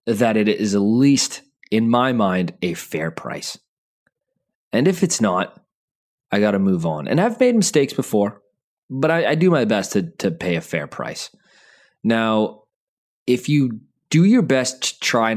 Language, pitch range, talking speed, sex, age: English, 95-140 Hz, 175 wpm, male, 20-39